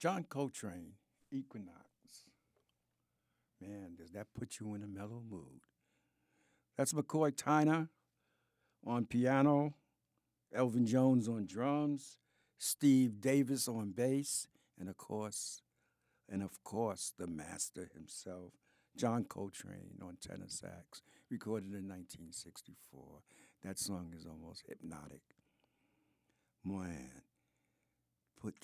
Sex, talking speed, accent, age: male, 105 wpm, American, 60-79